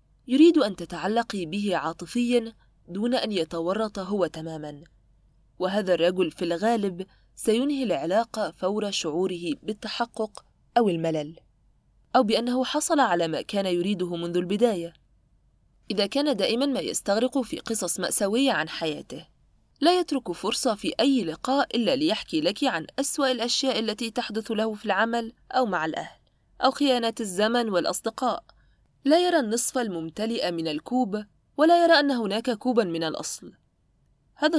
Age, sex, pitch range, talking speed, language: 20-39, female, 175-245 Hz, 135 wpm, Arabic